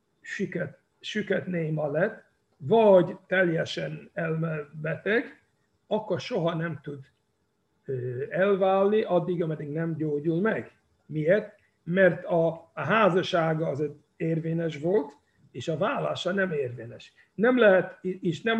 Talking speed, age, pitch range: 110 wpm, 60-79, 155-195 Hz